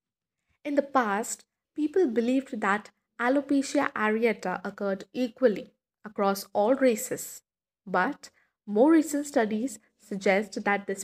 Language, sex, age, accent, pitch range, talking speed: English, female, 20-39, Indian, 210-260 Hz, 110 wpm